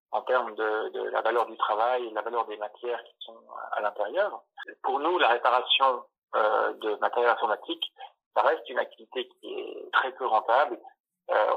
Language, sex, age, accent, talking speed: French, male, 50-69, French, 180 wpm